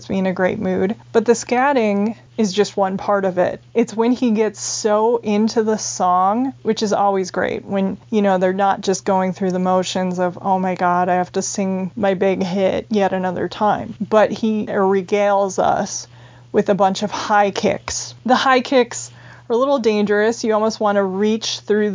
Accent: American